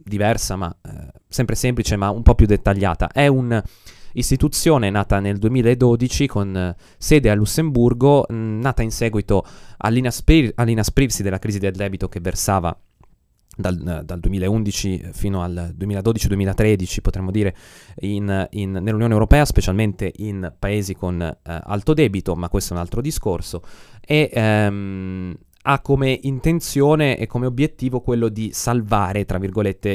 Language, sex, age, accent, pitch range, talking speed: Italian, male, 20-39, native, 95-115 Hz, 140 wpm